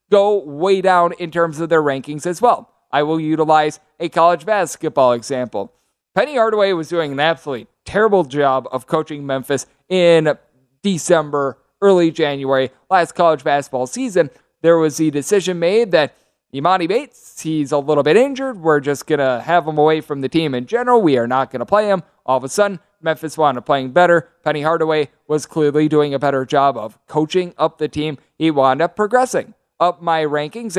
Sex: male